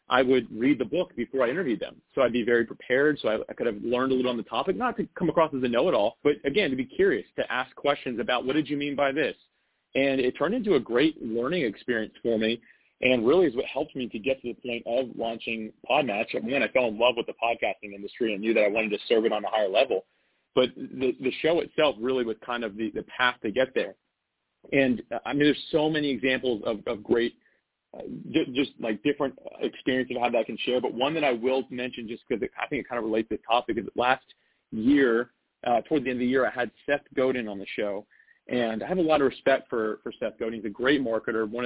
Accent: American